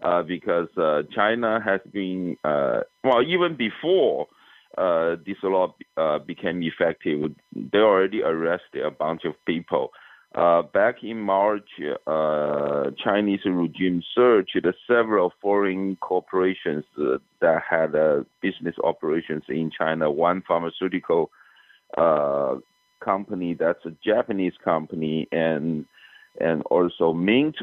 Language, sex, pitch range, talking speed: English, male, 80-100 Hz, 120 wpm